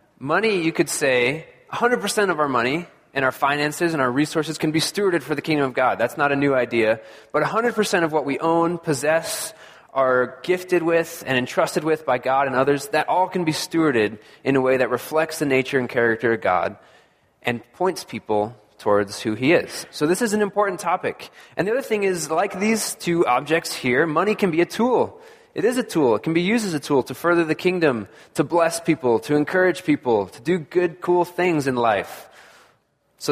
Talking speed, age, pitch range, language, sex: 210 wpm, 20-39, 130-180 Hz, English, male